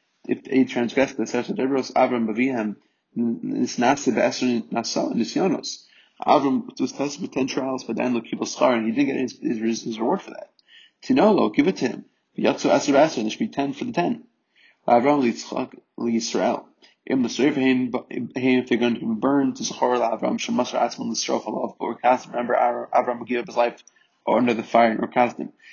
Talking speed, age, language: 165 wpm, 30-49, English